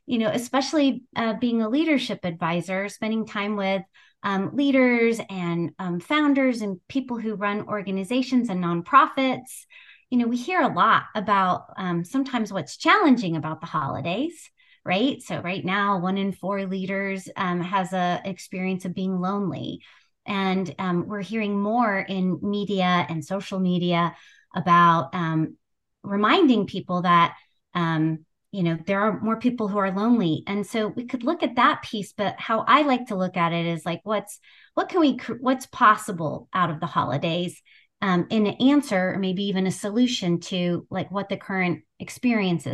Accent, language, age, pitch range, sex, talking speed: American, English, 30-49, 185-245 Hz, female, 170 wpm